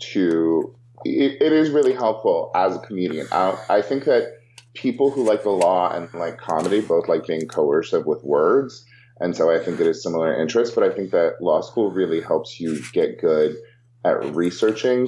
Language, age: English, 30-49